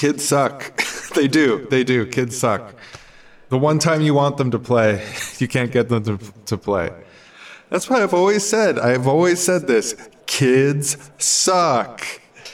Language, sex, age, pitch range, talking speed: English, male, 20-39, 105-145 Hz, 165 wpm